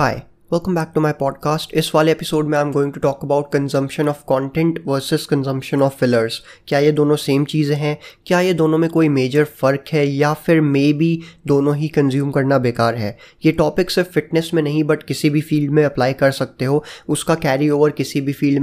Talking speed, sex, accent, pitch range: 220 wpm, male, native, 140-160 Hz